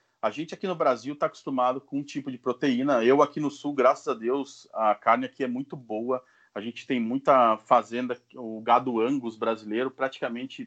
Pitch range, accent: 115-145 Hz, Brazilian